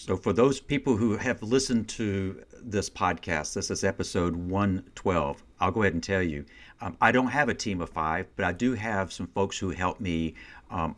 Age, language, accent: 60-79, English, American